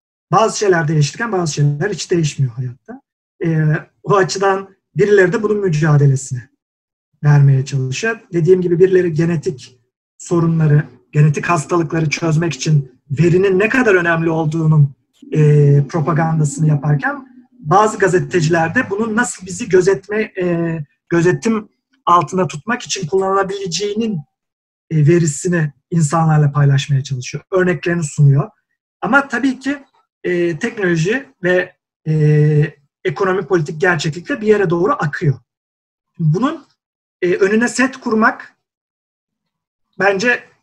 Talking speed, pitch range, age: 110 wpm, 150-200 Hz, 40-59